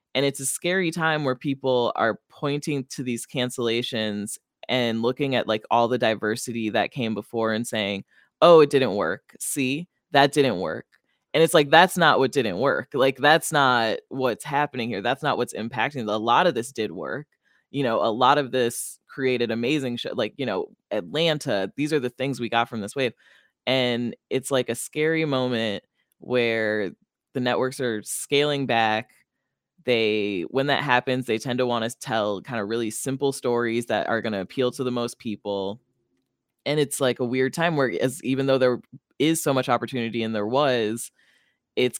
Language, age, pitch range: English, 20-39, 115-145 Hz